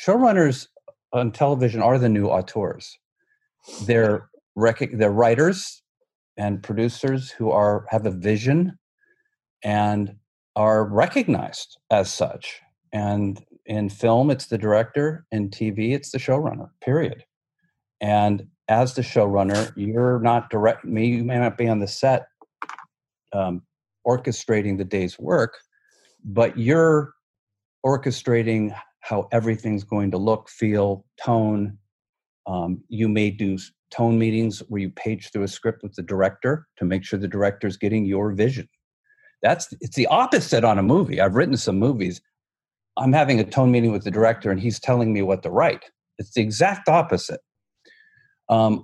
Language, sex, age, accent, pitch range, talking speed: English, male, 50-69, American, 105-135 Hz, 145 wpm